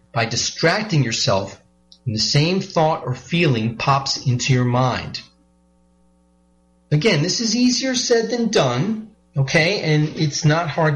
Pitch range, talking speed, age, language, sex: 110-150 Hz, 130 wpm, 40-59, English, male